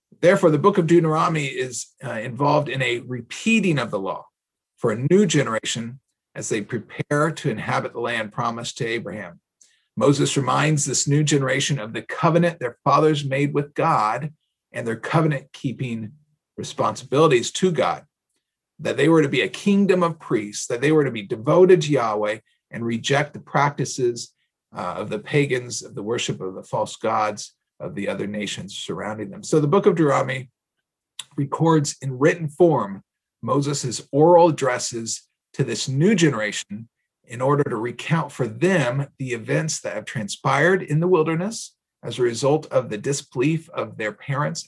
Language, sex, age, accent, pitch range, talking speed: English, male, 40-59, American, 120-165 Hz, 165 wpm